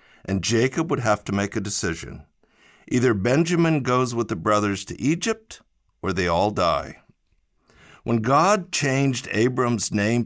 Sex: male